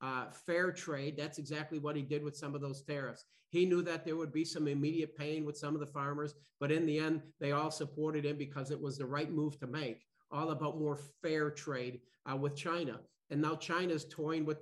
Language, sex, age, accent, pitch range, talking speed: English, male, 50-69, American, 145-170 Hz, 230 wpm